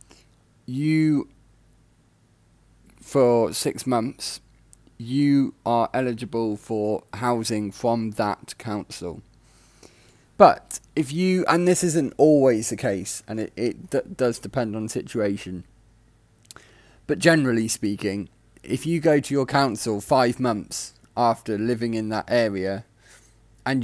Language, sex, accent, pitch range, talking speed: English, male, British, 105-125 Hz, 115 wpm